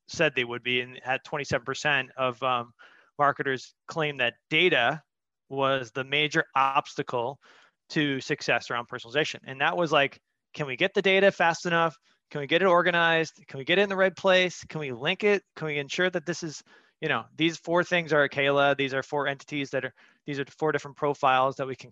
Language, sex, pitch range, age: English, male, 120-145 Hz, 20-39